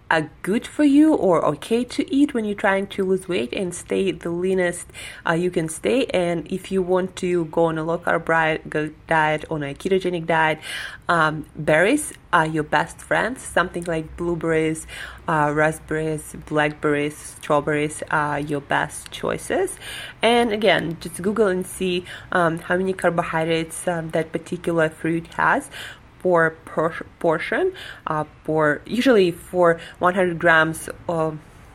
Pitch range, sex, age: 155-180 Hz, female, 20-39